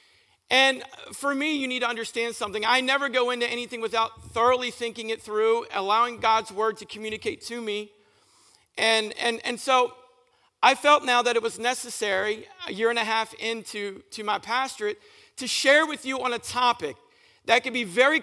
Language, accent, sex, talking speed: English, American, male, 185 wpm